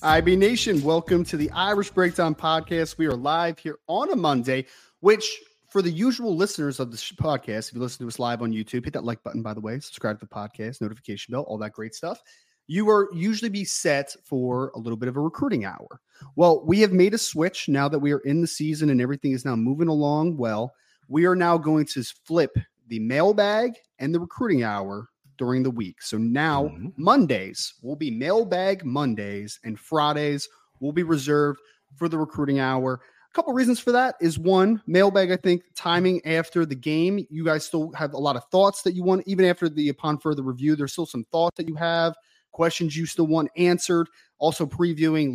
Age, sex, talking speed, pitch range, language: 30-49, male, 210 wpm, 135-180 Hz, English